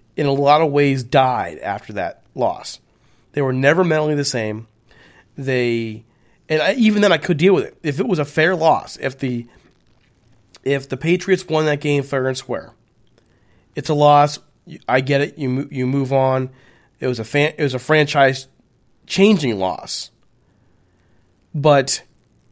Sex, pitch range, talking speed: male, 125-155 Hz, 170 wpm